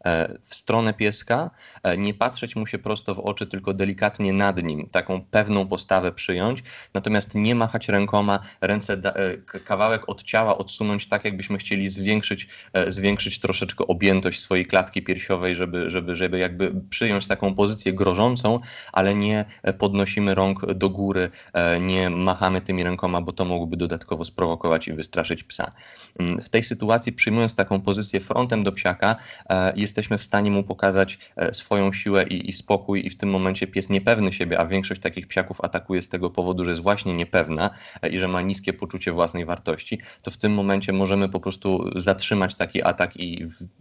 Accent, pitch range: native, 90-100 Hz